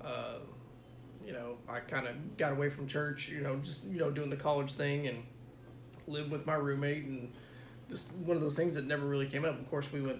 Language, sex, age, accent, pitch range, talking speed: English, male, 20-39, American, 125-145 Hz, 230 wpm